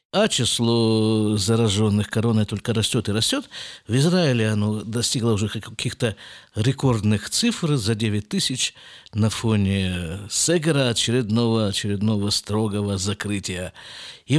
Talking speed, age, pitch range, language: 110 wpm, 50-69, 110-155 Hz, Russian